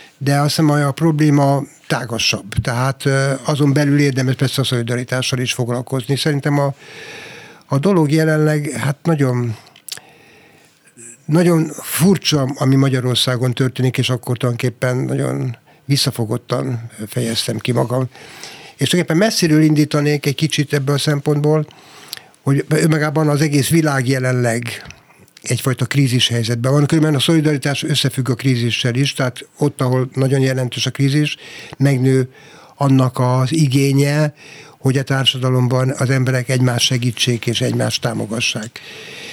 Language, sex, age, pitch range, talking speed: Hungarian, male, 60-79, 125-150 Hz, 130 wpm